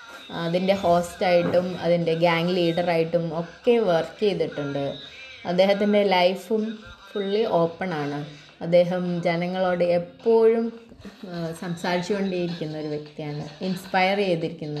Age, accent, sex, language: 20-39, native, female, Malayalam